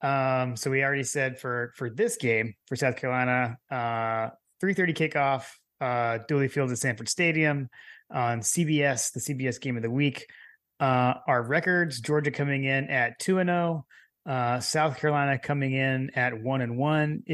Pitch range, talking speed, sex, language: 125-150 Hz, 150 wpm, male, English